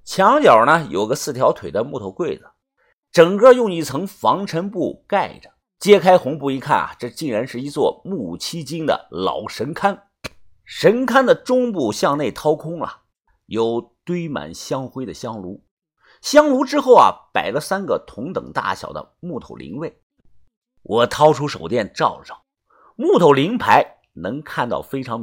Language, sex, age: Chinese, male, 50-69